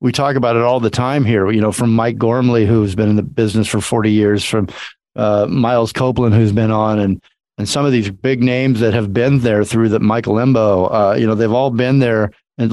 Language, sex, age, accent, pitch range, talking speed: English, male, 40-59, American, 110-130 Hz, 240 wpm